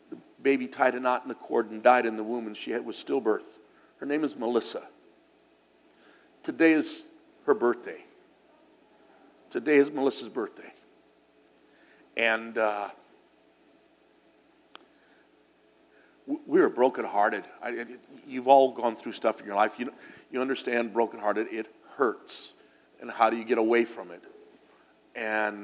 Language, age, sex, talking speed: English, 50-69, male, 145 wpm